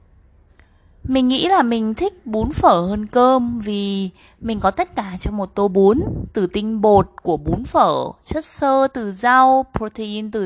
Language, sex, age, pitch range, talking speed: Vietnamese, female, 20-39, 180-260 Hz, 170 wpm